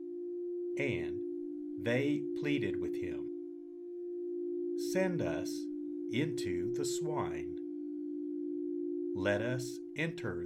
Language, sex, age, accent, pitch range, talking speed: English, male, 50-69, American, 320-345 Hz, 75 wpm